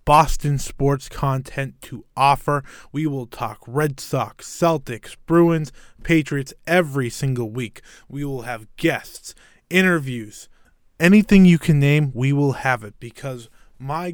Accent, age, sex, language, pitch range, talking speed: American, 20-39, male, English, 130-160 Hz, 130 wpm